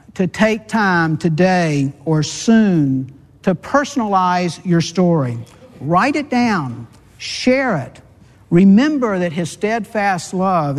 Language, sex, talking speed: English, male, 110 wpm